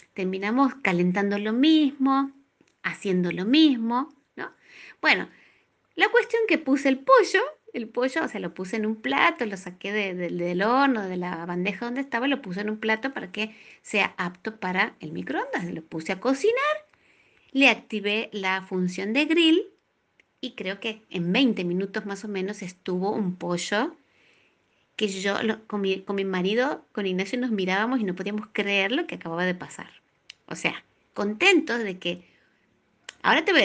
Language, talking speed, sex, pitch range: Spanish, 170 wpm, female, 190-270 Hz